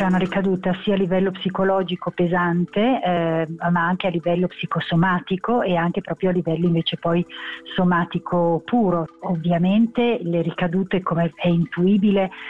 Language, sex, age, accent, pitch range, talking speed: Italian, female, 50-69, native, 170-205 Hz, 135 wpm